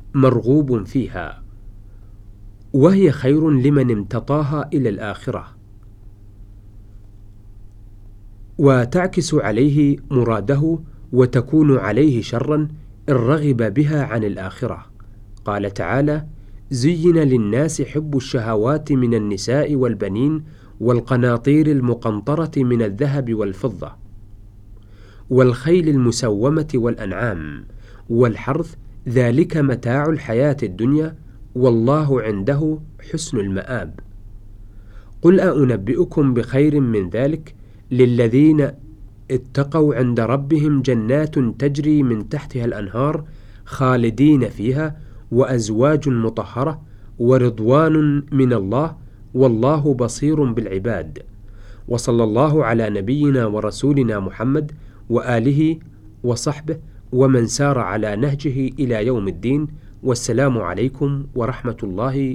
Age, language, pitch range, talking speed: 40-59, Arabic, 105-145 Hz, 85 wpm